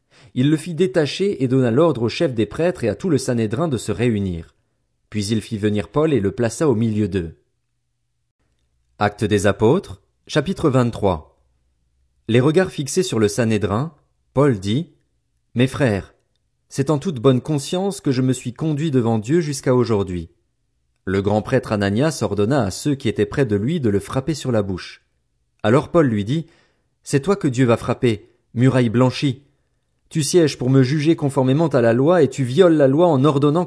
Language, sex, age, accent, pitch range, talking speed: French, male, 40-59, French, 105-150 Hz, 195 wpm